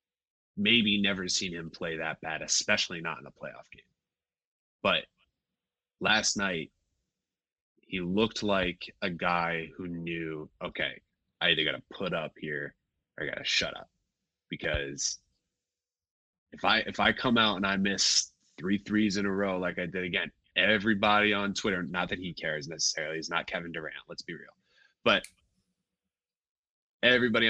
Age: 20-39